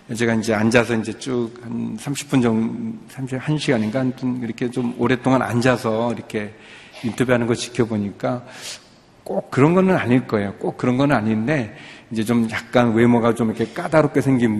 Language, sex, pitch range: Korean, male, 110-130 Hz